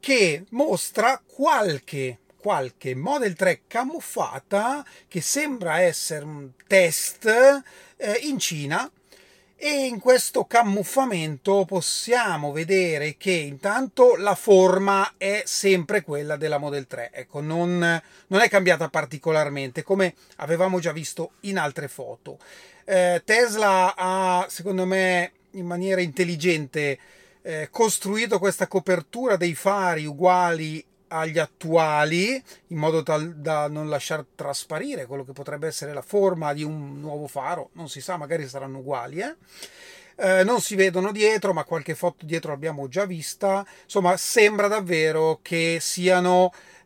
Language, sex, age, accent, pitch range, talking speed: Italian, male, 30-49, native, 155-195 Hz, 125 wpm